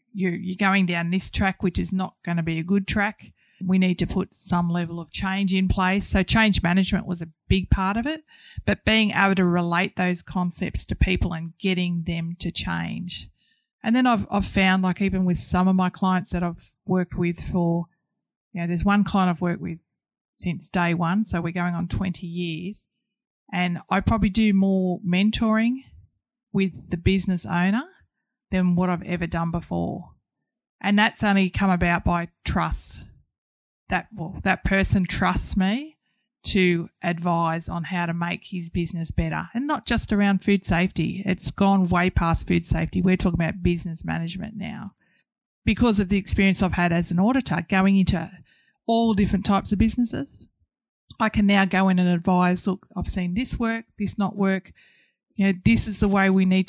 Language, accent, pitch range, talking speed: English, Australian, 175-200 Hz, 185 wpm